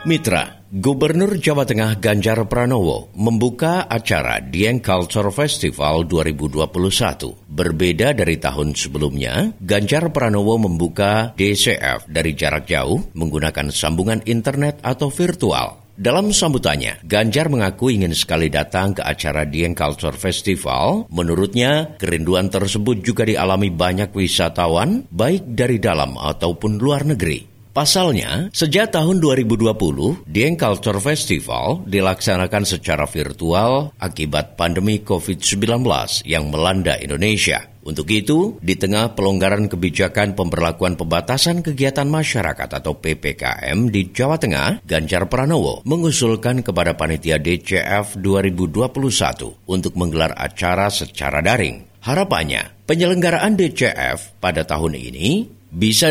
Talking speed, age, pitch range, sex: 110 wpm, 50-69, 85-120 Hz, male